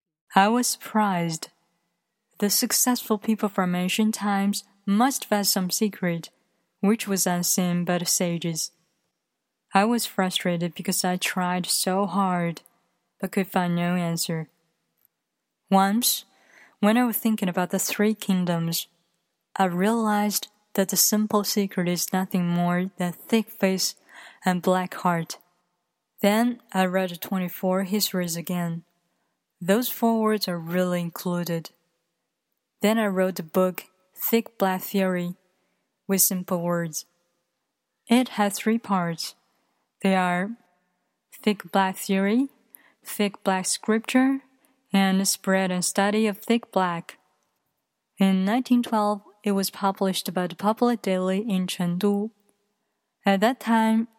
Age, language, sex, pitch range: 20-39, Chinese, female, 180-210 Hz